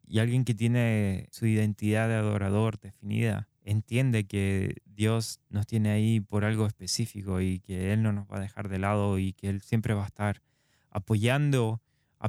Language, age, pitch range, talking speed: Spanish, 20-39, 105-130 Hz, 180 wpm